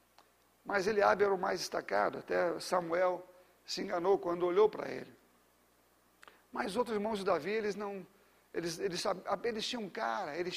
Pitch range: 185-235 Hz